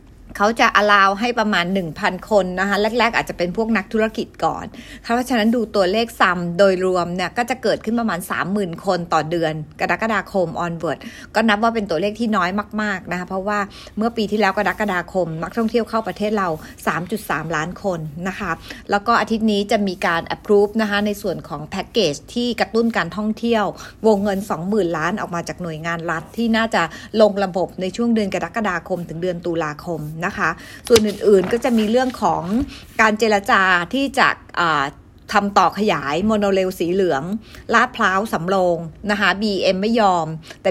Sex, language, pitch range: female, English, 175-220 Hz